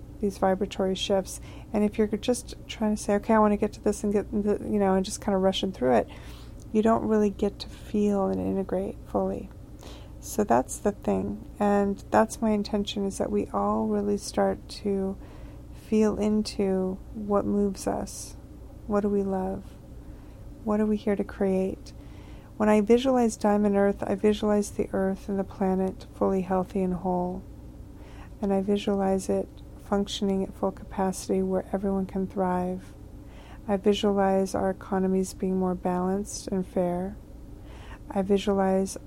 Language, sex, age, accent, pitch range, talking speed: English, female, 40-59, American, 190-205 Hz, 165 wpm